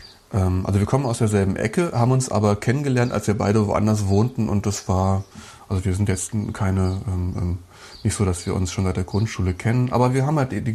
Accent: German